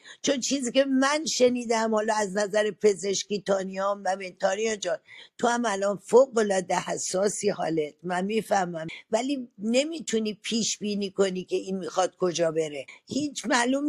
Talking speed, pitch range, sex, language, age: 145 wpm, 190-235 Hz, female, Persian, 50-69